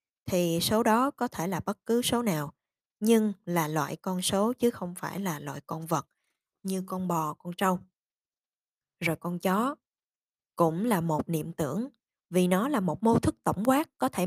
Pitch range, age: 170-225 Hz, 20-39